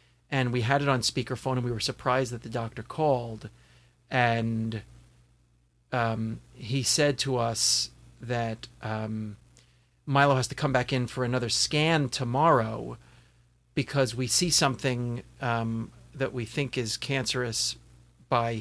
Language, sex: English, male